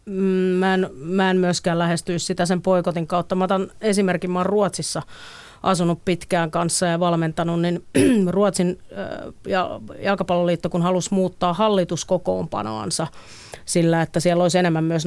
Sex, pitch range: female, 170-185 Hz